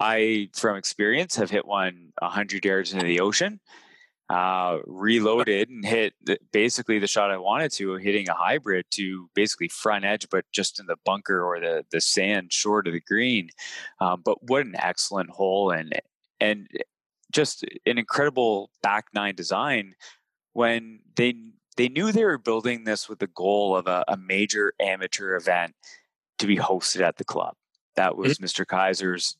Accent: American